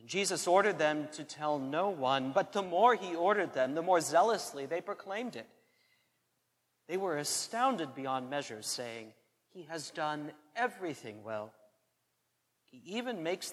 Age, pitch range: 40-59, 140-185 Hz